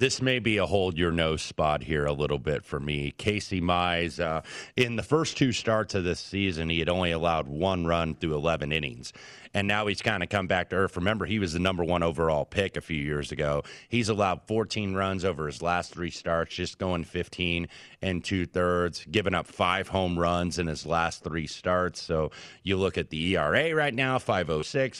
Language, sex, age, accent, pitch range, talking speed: English, male, 30-49, American, 85-105 Hz, 205 wpm